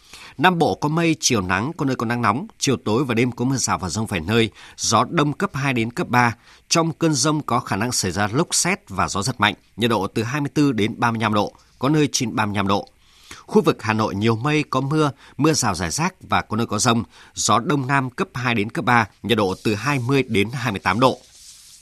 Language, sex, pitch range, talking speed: Vietnamese, male, 105-140 Hz, 240 wpm